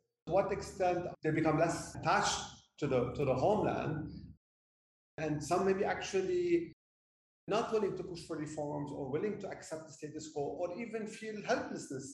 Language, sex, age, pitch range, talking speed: English, male, 40-59, 145-190 Hz, 165 wpm